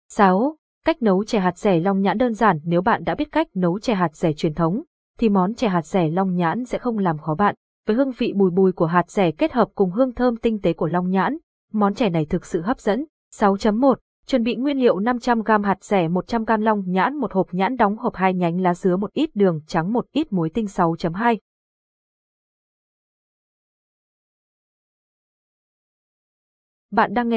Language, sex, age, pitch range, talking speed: Vietnamese, female, 20-39, 180-230 Hz, 205 wpm